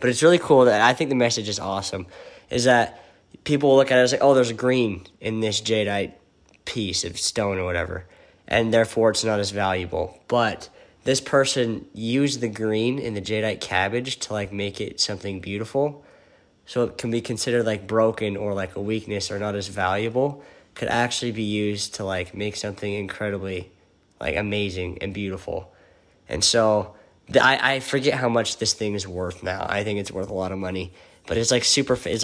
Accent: American